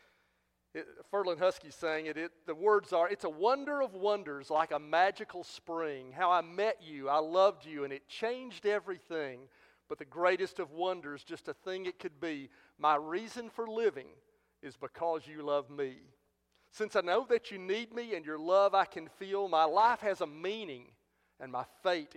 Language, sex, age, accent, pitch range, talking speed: English, male, 40-59, American, 145-205 Hz, 185 wpm